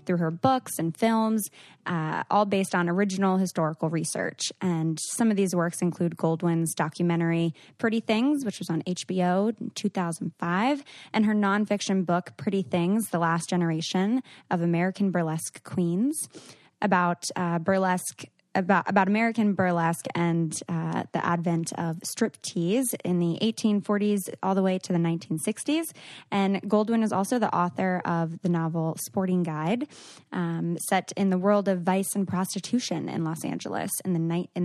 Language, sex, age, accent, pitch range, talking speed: English, female, 20-39, American, 170-205 Hz, 150 wpm